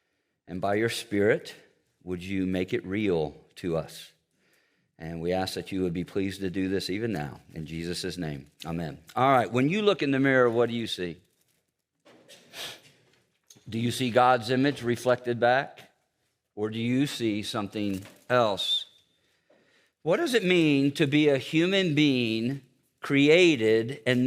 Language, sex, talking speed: English, male, 160 wpm